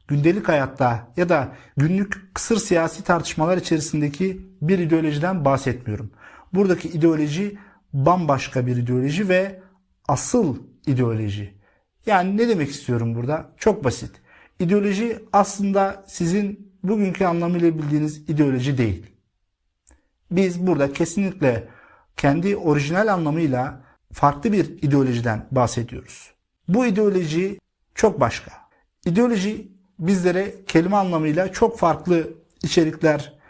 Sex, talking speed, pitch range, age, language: male, 100 wpm, 135-190 Hz, 50-69, Turkish